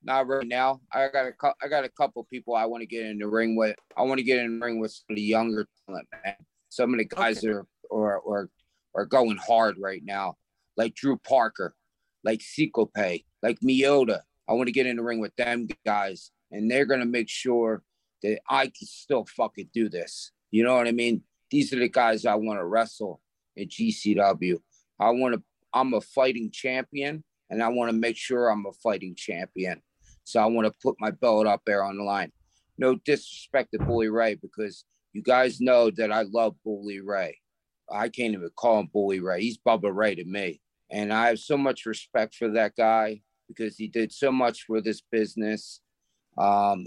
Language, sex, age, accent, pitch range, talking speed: English, male, 30-49, American, 105-120 Hz, 210 wpm